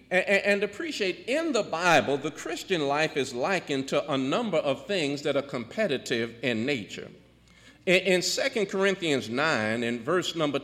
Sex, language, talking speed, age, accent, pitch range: male, English, 150 wpm, 50-69, American, 145-220 Hz